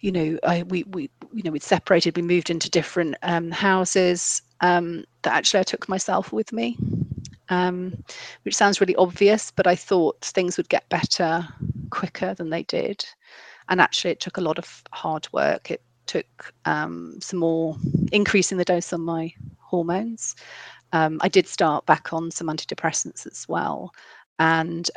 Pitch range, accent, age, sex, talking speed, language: 160-180 Hz, British, 30-49, female, 170 wpm, English